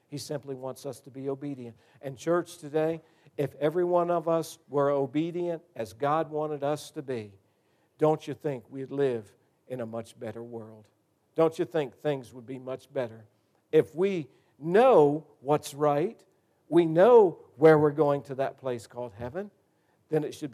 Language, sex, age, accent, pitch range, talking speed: English, male, 50-69, American, 125-150 Hz, 170 wpm